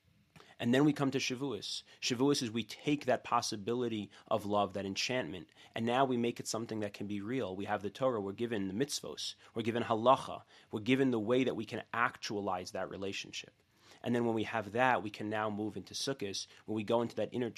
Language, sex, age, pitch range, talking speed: English, male, 30-49, 105-125 Hz, 220 wpm